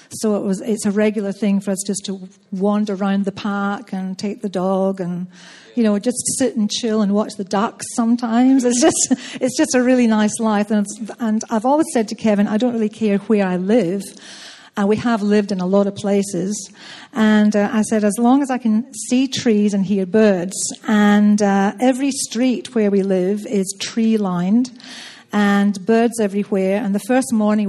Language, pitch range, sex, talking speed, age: English, 200-240 Hz, female, 200 wpm, 50-69